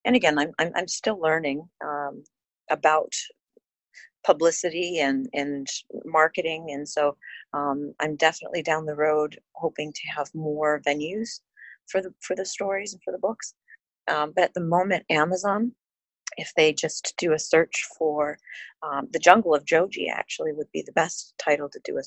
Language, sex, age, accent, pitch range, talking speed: English, female, 40-59, American, 145-185 Hz, 165 wpm